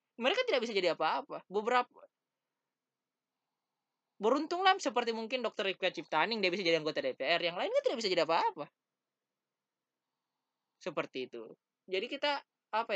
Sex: male